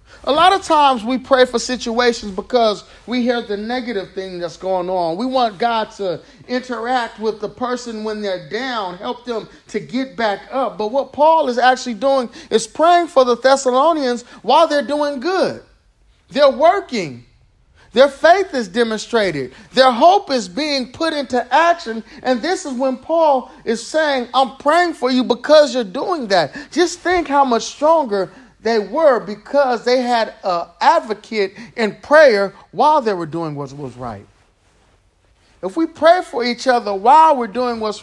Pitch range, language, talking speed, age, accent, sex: 200-270 Hz, English, 170 wpm, 30-49, American, male